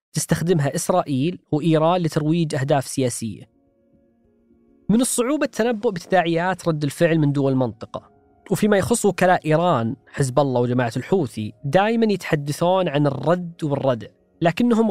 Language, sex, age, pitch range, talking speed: Arabic, female, 20-39, 140-185 Hz, 115 wpm